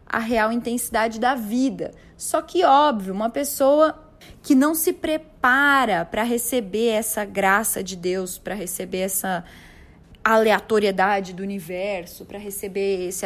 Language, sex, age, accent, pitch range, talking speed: Portuguese, female, 10-29, Brazilian, 210-315 Hz, 130 wpm